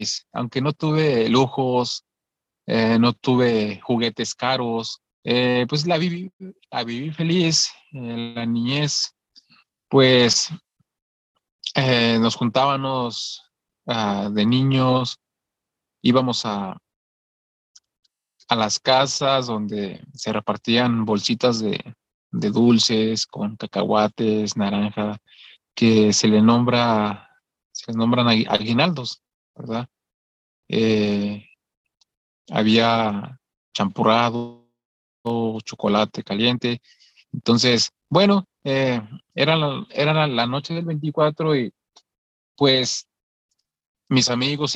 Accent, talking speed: Mexican, 95 wpm